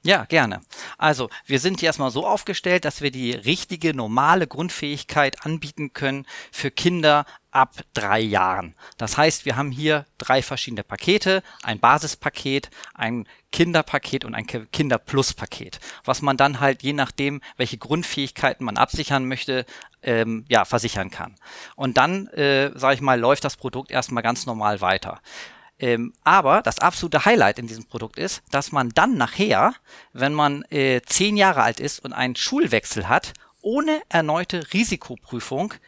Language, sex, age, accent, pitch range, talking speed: German, male, 40-59, German, 125-170 Hz, 150 wpm